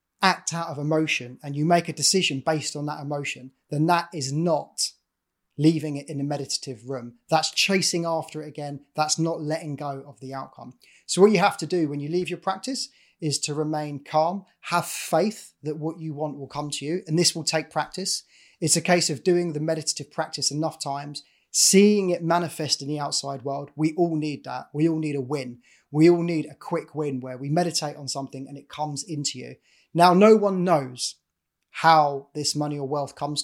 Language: English